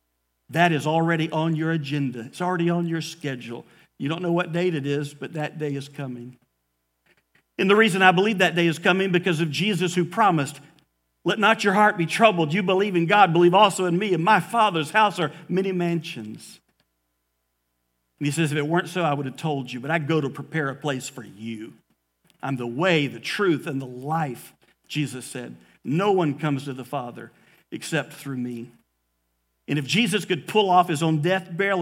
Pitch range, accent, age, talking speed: 130-180 Hz, American, 50-69, 205 wpm